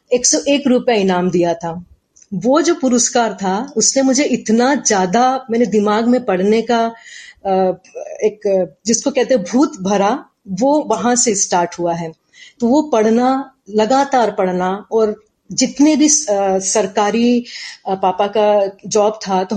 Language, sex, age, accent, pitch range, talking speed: Hindi, female, 30-49, native, 200-250 Hz, 140 wpm